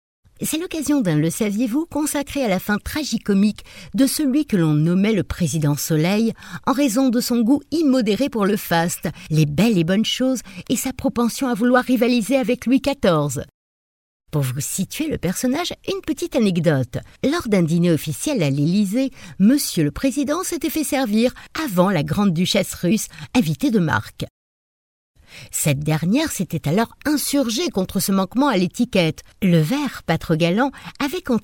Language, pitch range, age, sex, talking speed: French, 175-265 Hz, 60-79, female, 165 wpm